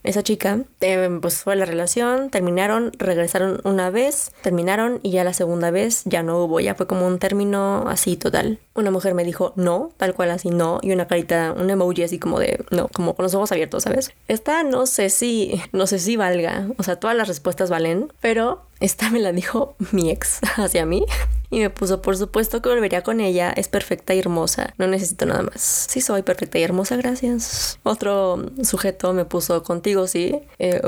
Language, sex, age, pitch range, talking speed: Spanish, female, 20-39, 180-225 Hz, 200 wpm